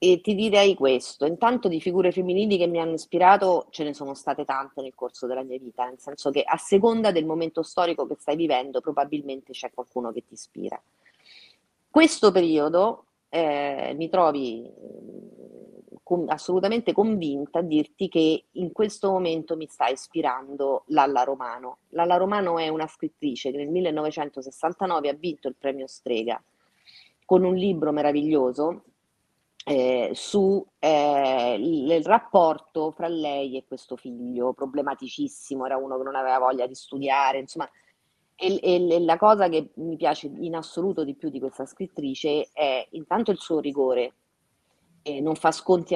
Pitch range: 135-180 Hz